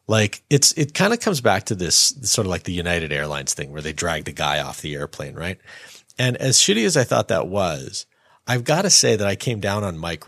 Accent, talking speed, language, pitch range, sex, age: American, 255 wpm, English, 90-135 Hz, male, 30-49